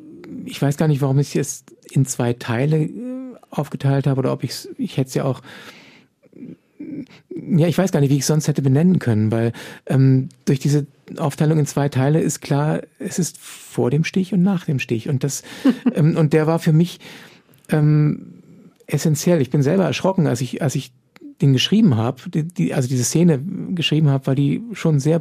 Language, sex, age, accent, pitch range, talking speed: German, male, 50-69, German, 135-170 Hz, 200 wpm